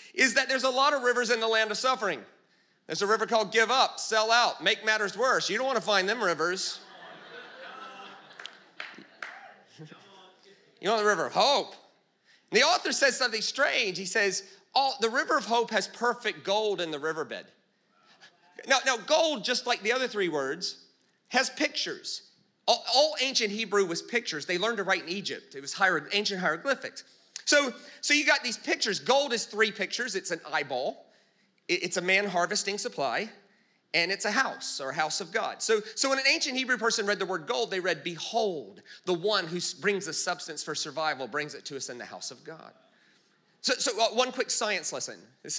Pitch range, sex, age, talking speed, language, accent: 185-250 Hz, male, 30-49, 195 wpm, English, American